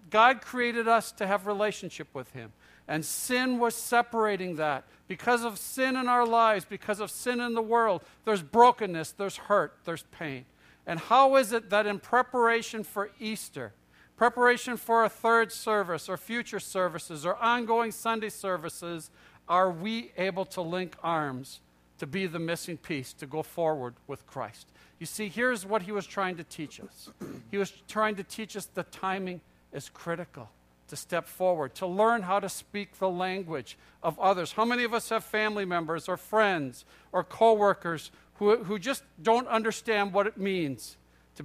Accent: American